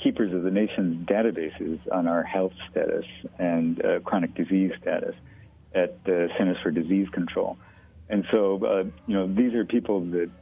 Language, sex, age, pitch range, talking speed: English, male, 50-69, 85-105 Hz, 165 wpm